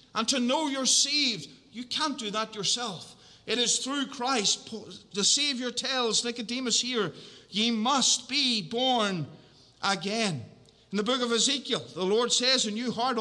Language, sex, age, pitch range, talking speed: English, male, 50-69, 180-240 Hz, 160 wpm